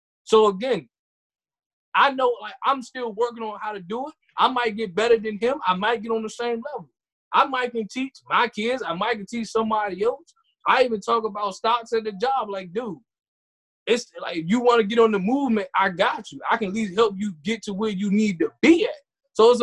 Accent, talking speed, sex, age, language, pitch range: American, 230 wpm, male, 20-39, English, 210-250 Hz